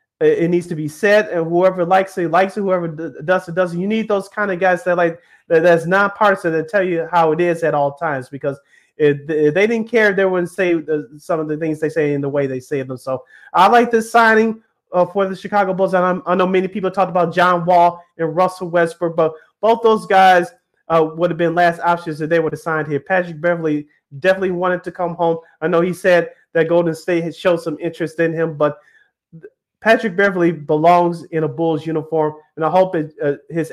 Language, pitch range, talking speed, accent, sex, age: English, 155-185 Hz, 220 wpm, American, male, 30-49